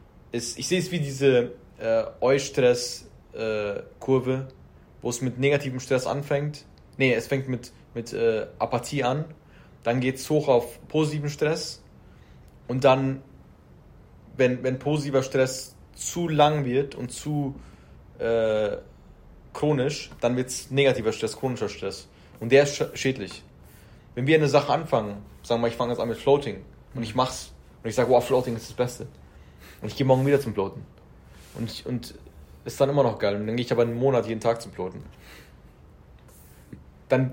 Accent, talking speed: German, 165 wpm